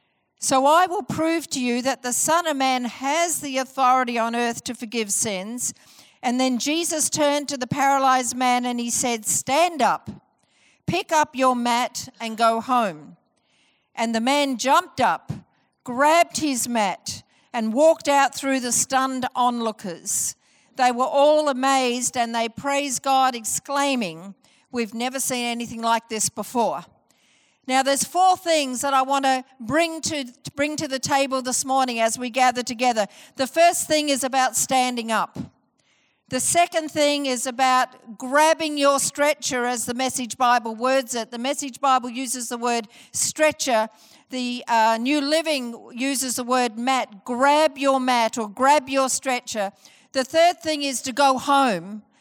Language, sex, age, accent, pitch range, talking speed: English, female, 50-69, Australian, 240-280 Hz, 160 wpm